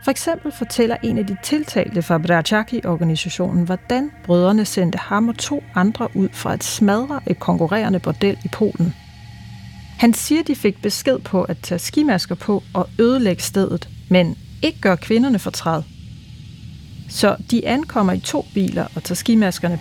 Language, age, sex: Danish, 30-49, female